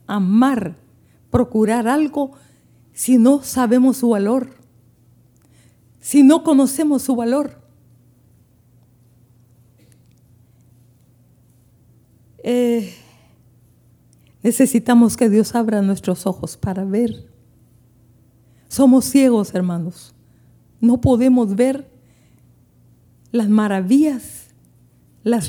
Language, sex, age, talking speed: Spanish, female, 50-69, 75 wpm